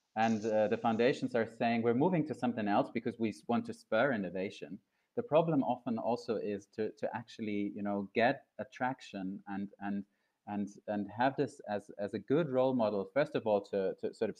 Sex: male